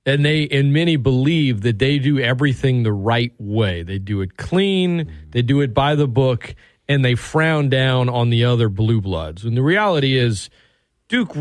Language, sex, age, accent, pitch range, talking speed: English, male, 40-59, American, 115-150 Hz, 190 wpm